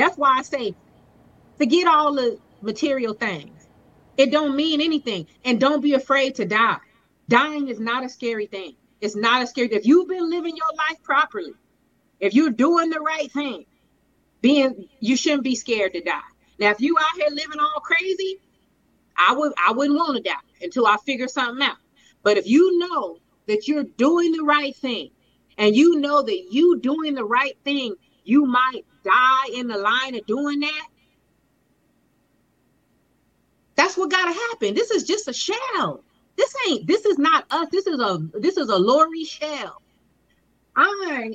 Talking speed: 180 wpm